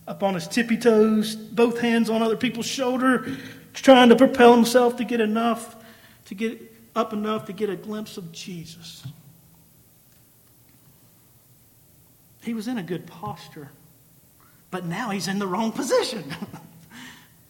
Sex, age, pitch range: male, 40-59, 165-225 Hz